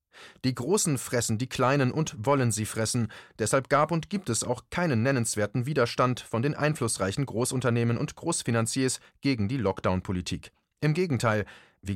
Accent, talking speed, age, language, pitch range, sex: German, 150 wpm, 30-49, German, 115-145 Hz, male